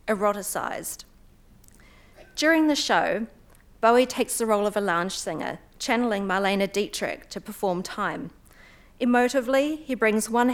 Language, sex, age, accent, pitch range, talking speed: English, female, 40-59, Australian, 205-255 Hz, 125 wpm